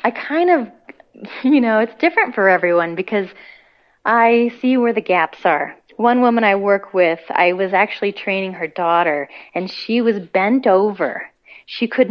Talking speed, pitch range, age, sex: 170 wpm, 170-215 Hz, 30-49, female